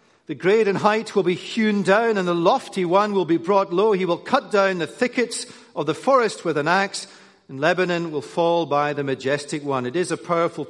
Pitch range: 125-190 Hz